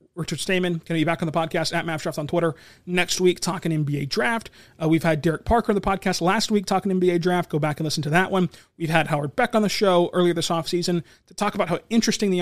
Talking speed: 265 wpm